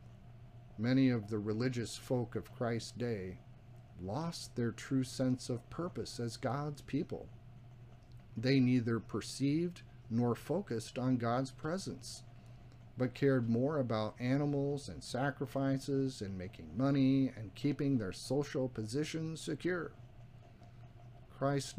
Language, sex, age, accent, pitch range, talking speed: English, male, 40-59, American, 115-135 Hz, 115 wpm